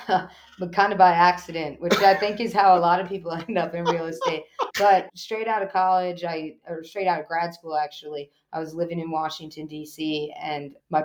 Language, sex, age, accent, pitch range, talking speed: English, female, 20-39, American, 150-180 Hz, 215 wpm